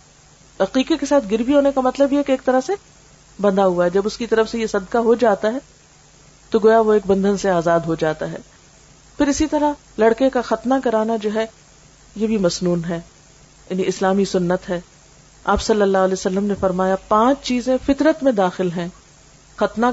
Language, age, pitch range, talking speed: Urdu, 40-59, 180-225 Hz, 200 wpm